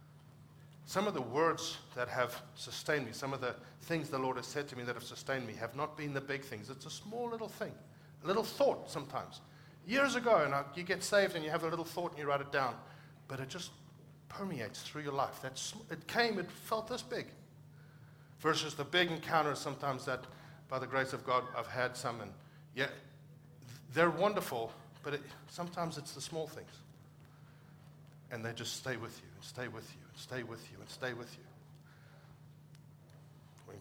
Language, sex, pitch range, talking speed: English, male, 130-155 Hz, 195 wpm